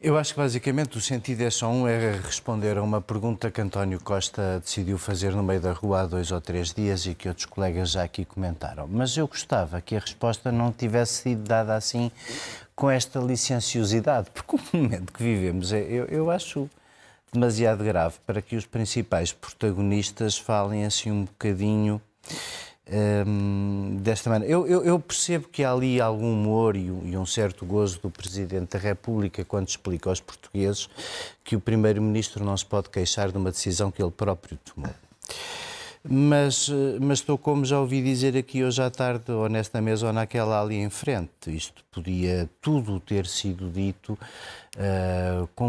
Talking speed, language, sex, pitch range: 175 wpm, Portuguese, male, 100-125 Hz